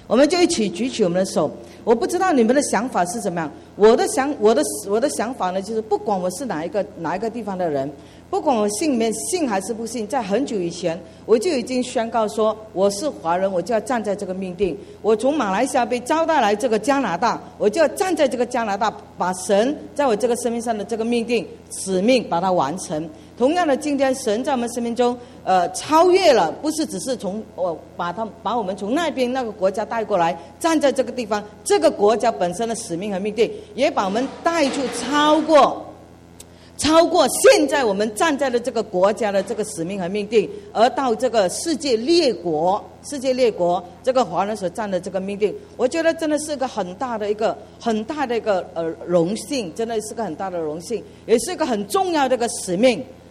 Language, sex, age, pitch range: English, female, 50-69, 195-270 Hz